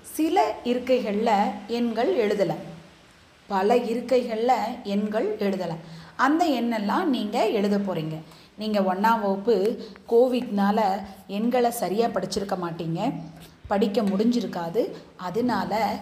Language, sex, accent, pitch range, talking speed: Tamil, female, native, 200-265 Hz, 90 wpm